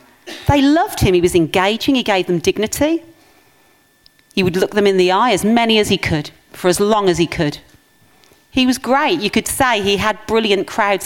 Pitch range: 185-275 Hz